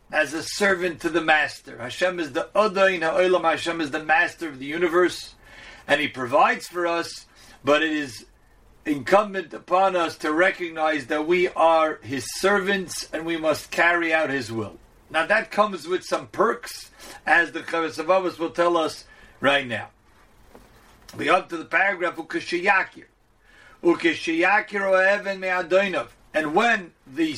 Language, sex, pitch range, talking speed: English, male, 155-195 Hz, 145 wpm